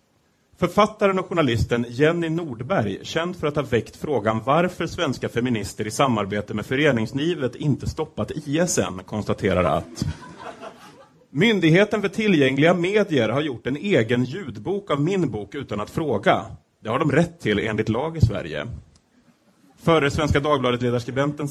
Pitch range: 110-160 Hz